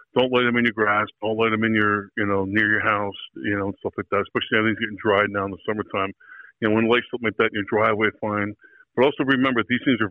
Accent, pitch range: American, 100-115 Hz